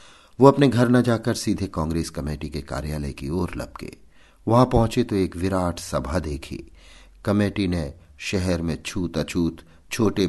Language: Hindi